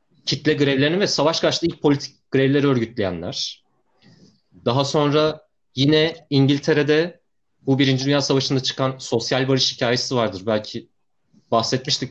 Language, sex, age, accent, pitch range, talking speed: Turkish, male, 30-49, native, 120-155 Hz, 120 wpm